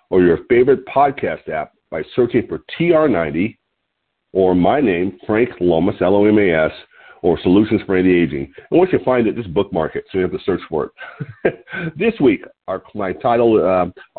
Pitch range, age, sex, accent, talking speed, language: 95-145 Hz, 50-69, male, American, 170 wpm, English